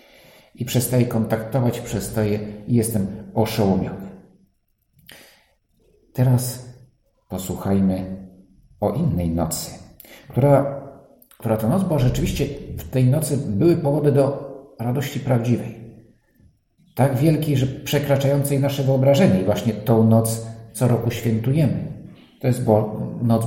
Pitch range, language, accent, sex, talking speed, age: 95-135 Hz, Polish, native, male, 105 wpm, 50-69